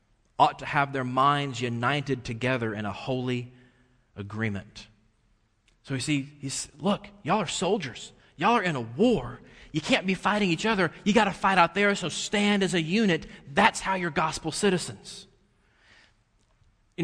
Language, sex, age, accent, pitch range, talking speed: English, male, 30-49, American, 125-190 Hz, 160 wpm